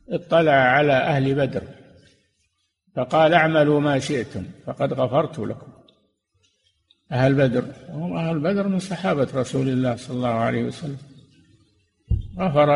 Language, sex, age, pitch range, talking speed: Arabic, male, 60-79, 125-170 Hz, 120 wpm